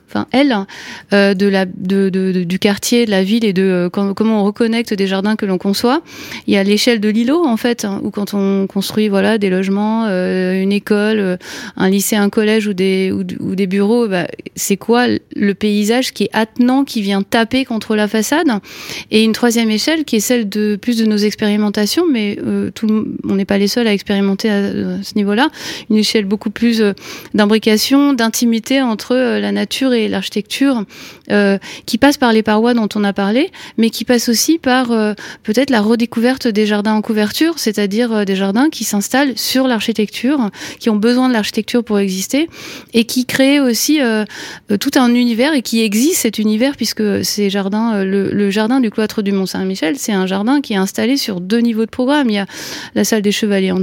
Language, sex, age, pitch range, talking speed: French, female, 30-49, 200-240 Hz, 200 wpm